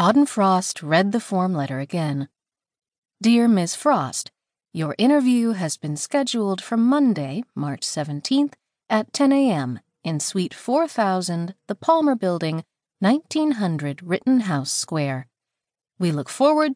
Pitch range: 150-240 Hz